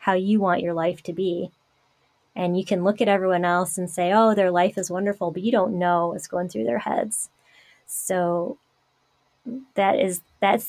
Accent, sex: American, female